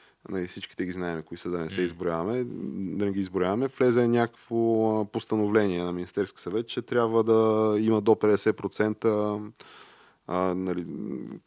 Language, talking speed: Bulgarian, 130 wpm